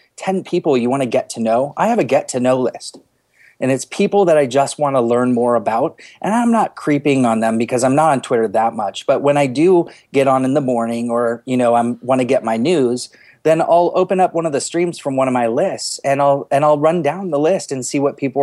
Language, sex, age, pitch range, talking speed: English, male, 30-49, 120-160 Hz, 260 wpm